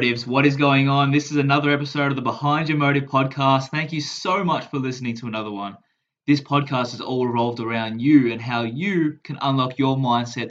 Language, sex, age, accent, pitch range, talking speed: English, male, 20-39, Australian, 115-145 Hz, 210 wpm